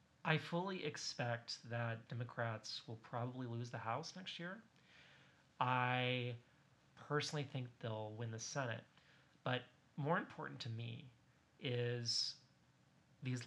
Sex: male